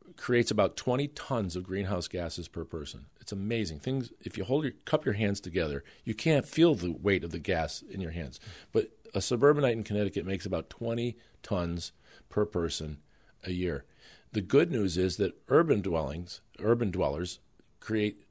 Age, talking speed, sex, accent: 50-69, 175 wpm, male, American